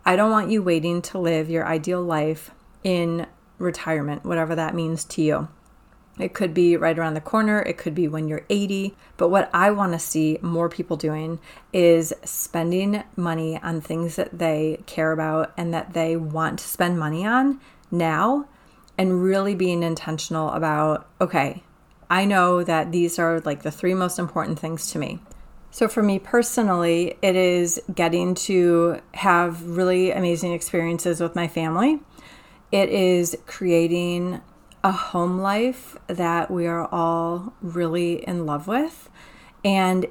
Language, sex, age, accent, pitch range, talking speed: English, female, 30-49, American, 160-185 Hz, 160 wpm